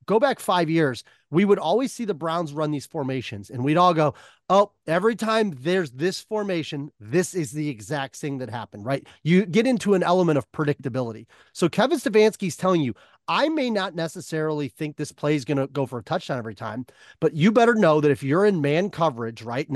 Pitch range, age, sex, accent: 140-190 Hz, 30-49, male, American